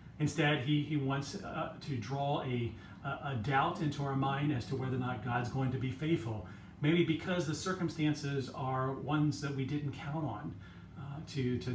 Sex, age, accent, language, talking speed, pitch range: male, 40-59, American, English, 190 wpm, 115-145 Hz